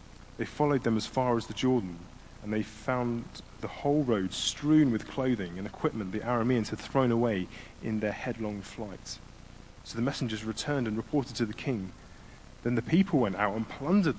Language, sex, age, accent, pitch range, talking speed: English, male, 30-49, British, 100-120 Hz, 185 wpm